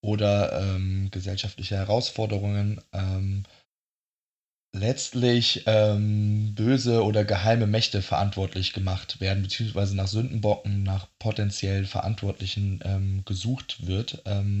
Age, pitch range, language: 20-39, 95-110 Hz, German